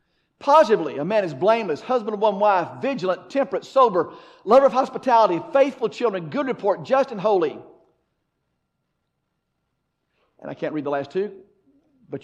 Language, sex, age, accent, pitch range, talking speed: English, male, 50-69, American, 160-230 Hz, 145 wpm